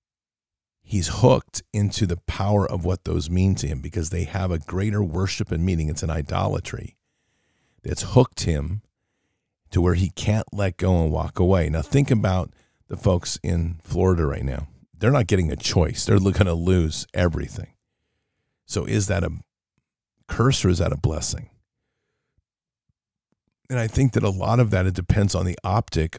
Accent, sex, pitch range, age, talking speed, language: American, male, 85-105 Hz, 50-69, 175 wpm, English